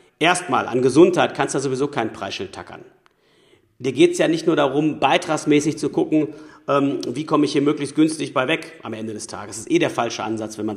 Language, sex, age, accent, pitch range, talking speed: German, male, 40-59, German, 130-160 Hz, 230 wpm